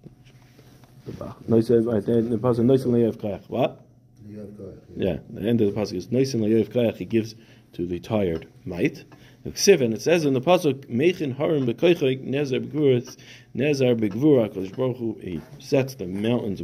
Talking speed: 85 wpm